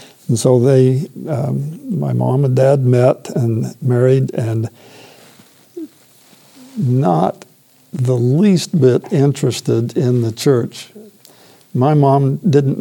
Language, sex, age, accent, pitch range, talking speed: English, male, 60-79, American, 120-145 Hz, 110 wpm